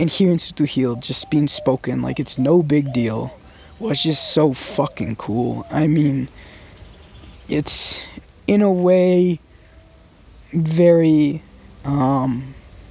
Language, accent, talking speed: English, American, 110 wpm